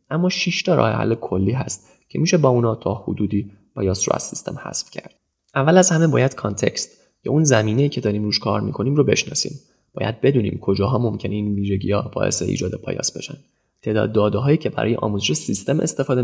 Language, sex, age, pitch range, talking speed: Persian, male, 20-39, 105-135 Hz, 190 wpm